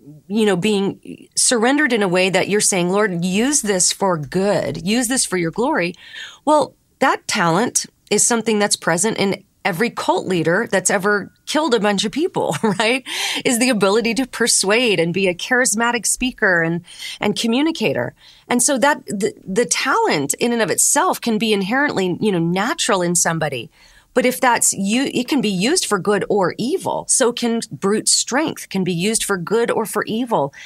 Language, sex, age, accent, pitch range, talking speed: English, female, 30-49, American, 185-240 Hz, 185 wpm